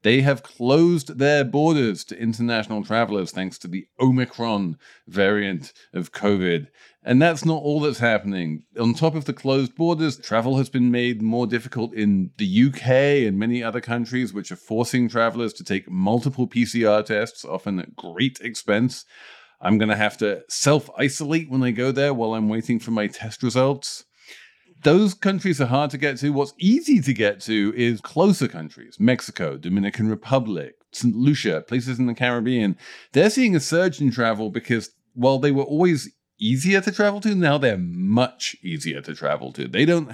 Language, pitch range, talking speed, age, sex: English, 110-150 Hz, 175 wpm, 40-59, male